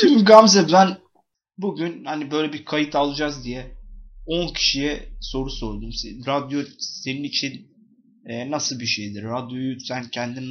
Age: 30-49